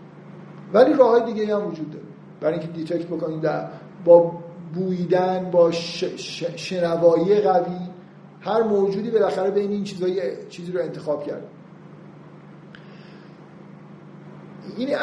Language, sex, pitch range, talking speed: Persian, male, 175-220 Hz, 110 wpm